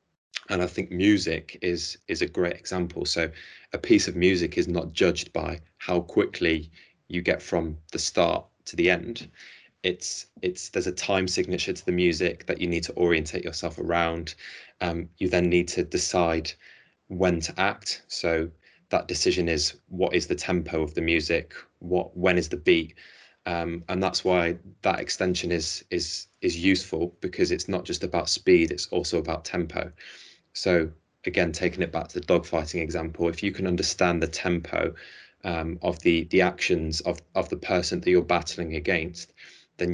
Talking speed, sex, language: 175 wpm, male, English